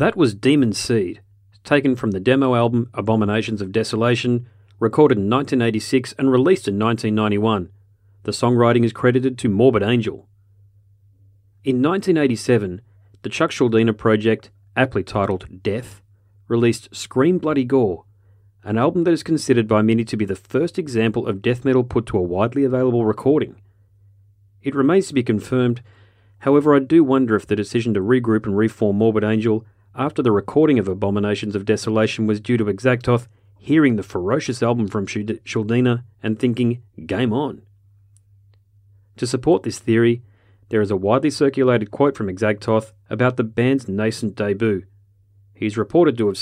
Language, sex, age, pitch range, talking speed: English, male, 40-59, 100-125 Hz, 155 wpm